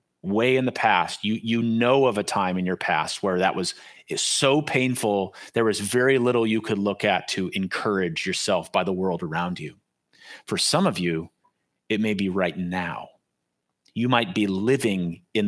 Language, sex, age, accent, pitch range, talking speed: English, male, 30-49, American, 100-130 Hz, 190 wpm